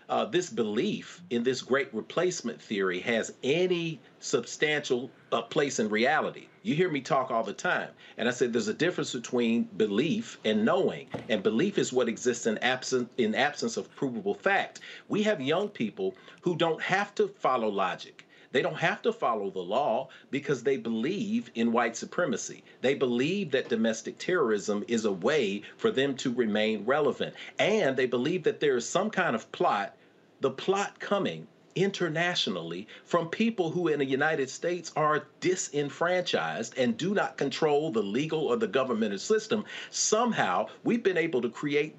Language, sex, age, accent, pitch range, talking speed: English, male, 40-59, American, 120-200 Hz, 170 wpm